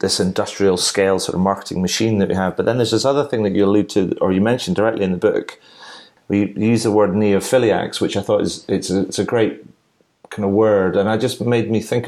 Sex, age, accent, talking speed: male, 30-49, British, 245 wpm